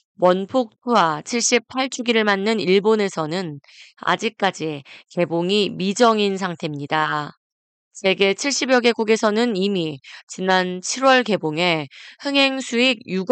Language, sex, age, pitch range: Korean, female, 20-39, 175-235 Hz